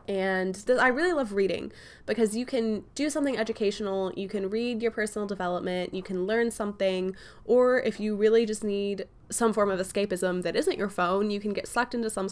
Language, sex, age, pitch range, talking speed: English, female, 10-29, 175-215 Hz, 200 wpm